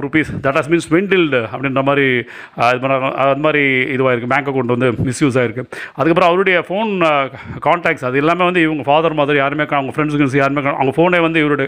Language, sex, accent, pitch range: Tamil, male, native, 135-170 Hz